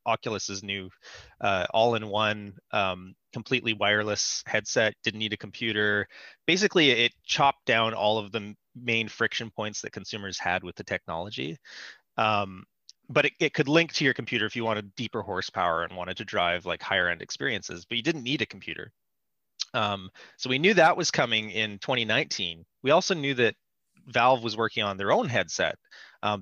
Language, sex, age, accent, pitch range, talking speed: English, male, 30-49, American, 105-125 Hz, 175 wpm